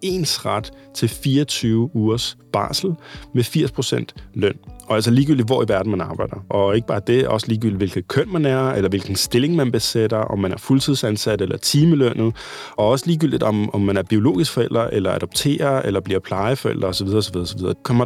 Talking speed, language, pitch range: 185 wpm, Danish, 105-135 Hz